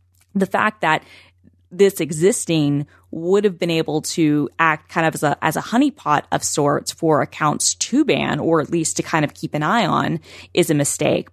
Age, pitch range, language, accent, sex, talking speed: 20-39, 145-170 Hz, English, American, female, 195 wpm